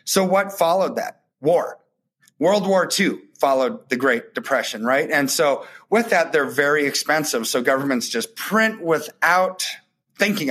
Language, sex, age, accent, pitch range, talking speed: English, male, 30-49, American, 125-165 Hz, 150 wpm